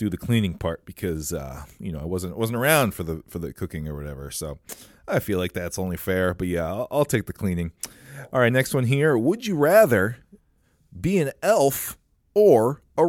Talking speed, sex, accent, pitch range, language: 210 wpm, male, American, 85-120 Hz, English